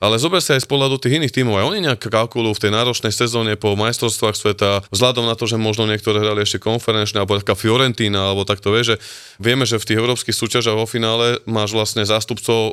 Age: 20-39